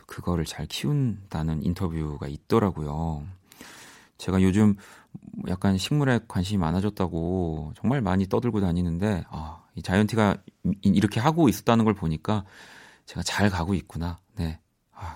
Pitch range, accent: 90-120 Hz, native